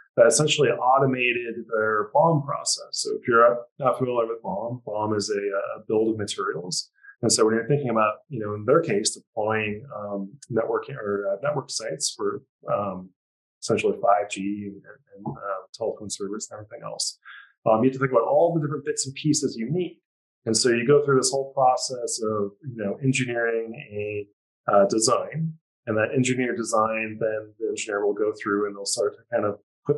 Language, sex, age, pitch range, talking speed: English, male, 30-49, 105-140 Hz, 195 wpm